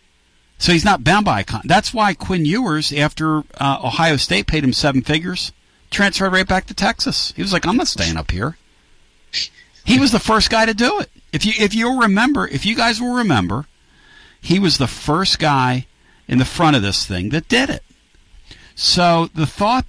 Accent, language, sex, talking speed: American, English, male, 200 wpm